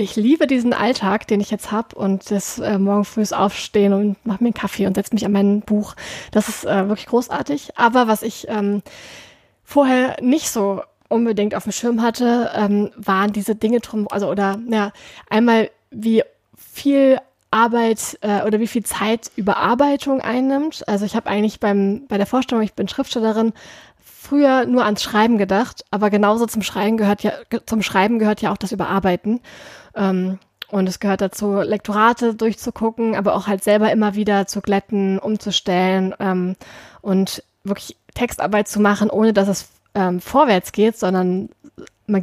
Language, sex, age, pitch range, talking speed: German, female, 20-39, 200-230 Hz, 165 wpm